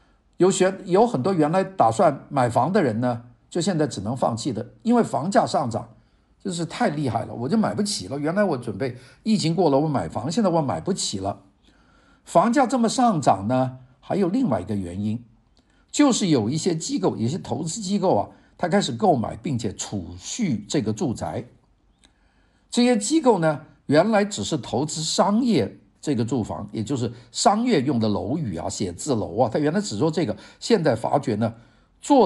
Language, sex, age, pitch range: Chinese, male, 50-69, 115-185 Hz